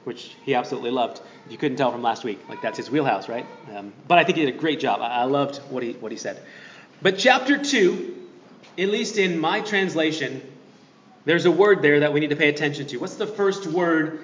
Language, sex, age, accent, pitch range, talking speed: English, male, 30-49, American, 150-210 Hz, 230 wpm